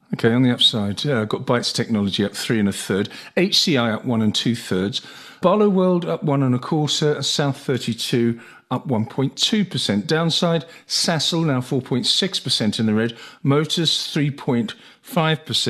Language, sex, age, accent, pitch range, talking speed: English, male, 50-69, British, 115-155 Hz, 155 wpm